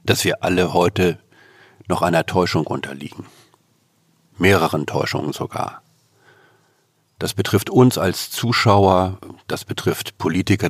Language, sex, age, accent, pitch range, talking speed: German, male, 50-69, German, 90-115 Hz, 105 wpm